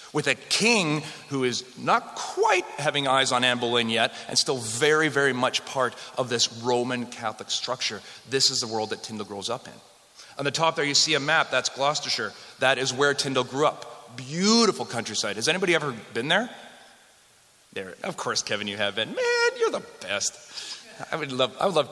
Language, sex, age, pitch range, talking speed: English, male, 30-49, 125-165 Hz, 200 wpm